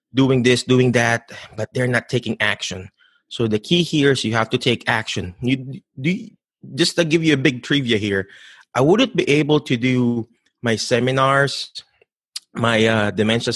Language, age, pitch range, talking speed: English, 20-39, 115-150 Hz, 175 wpm